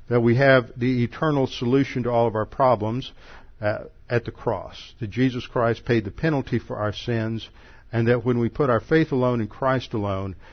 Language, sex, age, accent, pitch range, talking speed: English, male, 60-79, American, 105-125 Hz, 195 wpm